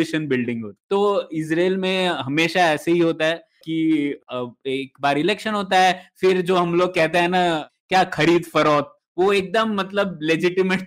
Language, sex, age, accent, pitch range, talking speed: Hindi, male, 20-39, native, 155-200 Hz, 165 wpm